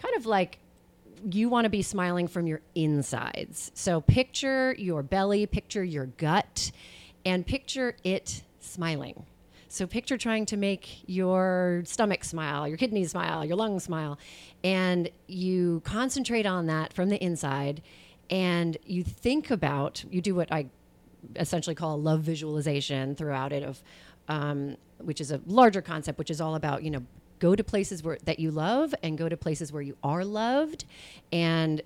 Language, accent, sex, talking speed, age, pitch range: English, American, female, 165 wpm, 30-49, 155-195 Hz